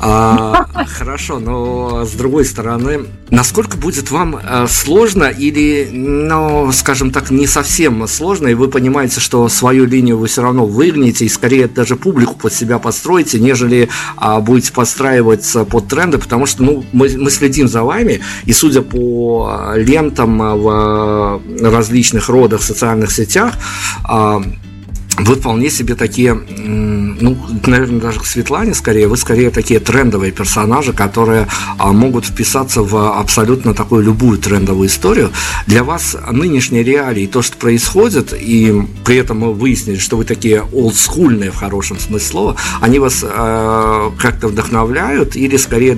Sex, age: male, 50-69